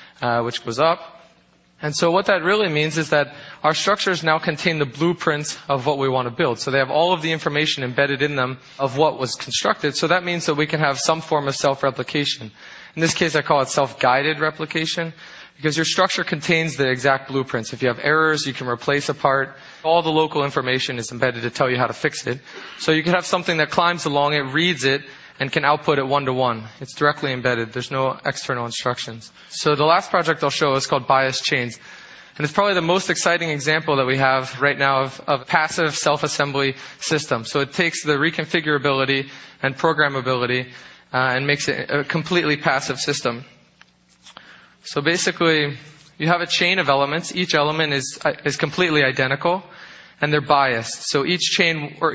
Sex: male